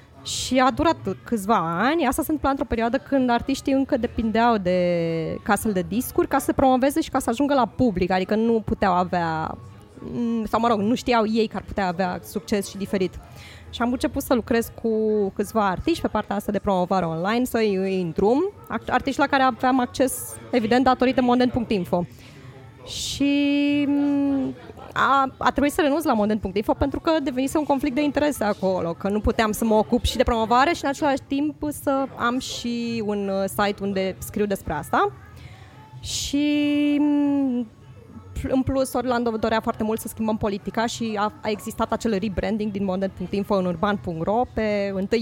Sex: female